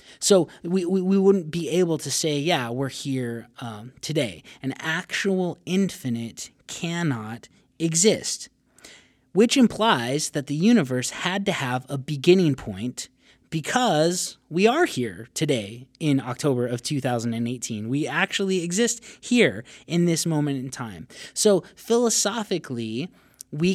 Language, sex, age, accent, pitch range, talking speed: English, male, 30-49, American, 130-180 Hz, 125 wpm